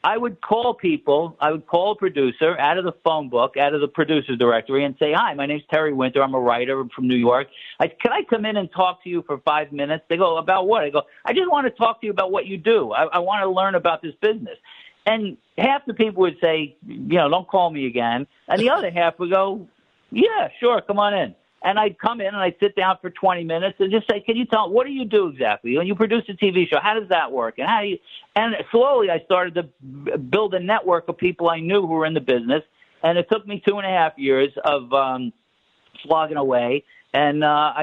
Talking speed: 250 wpm